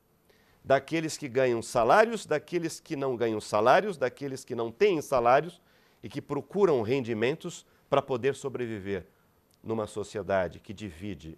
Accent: Brazilian